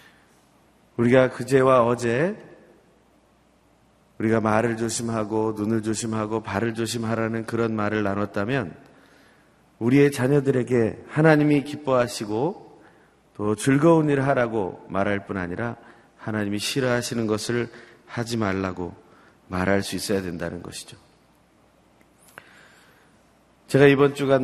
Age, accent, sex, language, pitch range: 30-49, native, male, Korean, 105-130 Hz